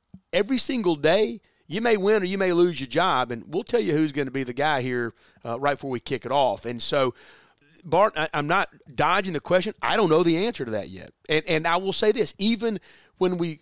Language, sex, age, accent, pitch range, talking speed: English, male, 30-49, American, 130-170 Hz, 245 wpm